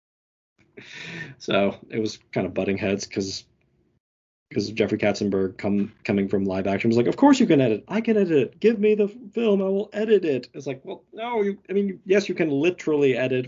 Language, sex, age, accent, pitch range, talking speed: English, male, 20-39, American, 110-145 Hz, 205 wpm